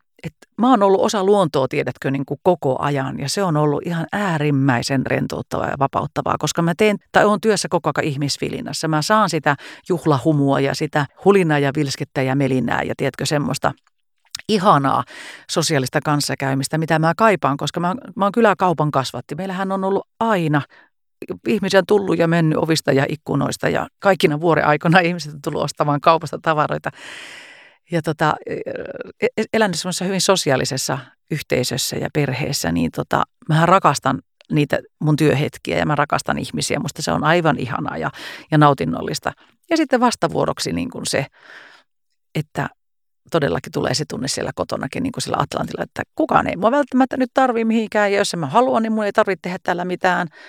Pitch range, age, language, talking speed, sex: 145-200 Hz, 40-59, Finnish, 165 wpm, female